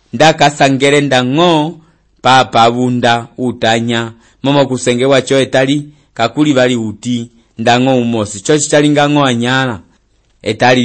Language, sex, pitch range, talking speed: English, male, 125-140 Hz, 105 wpm